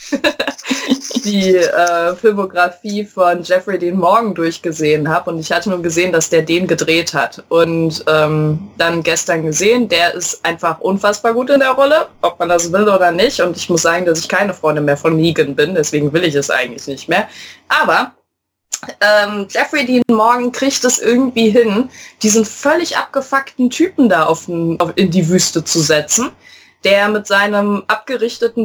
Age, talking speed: 20-39, 170 wpm